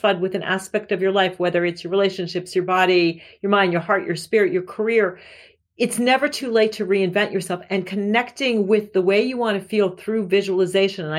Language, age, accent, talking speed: English, 40-59, American, 210 wpm